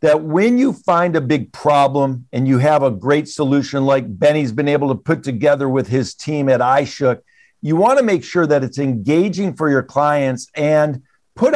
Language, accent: English, American